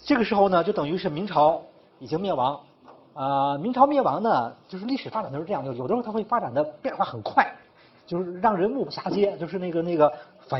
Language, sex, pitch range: Chinese, male, 150-210 Hz